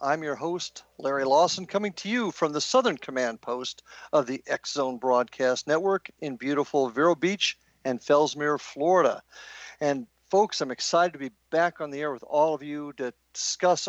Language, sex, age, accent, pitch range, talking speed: English, male, 50-69, American, 135-185 Hz, 175 wpm